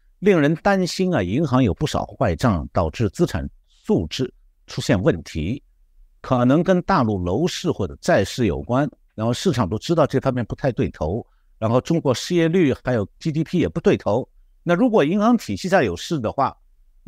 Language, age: Chinese, 60-79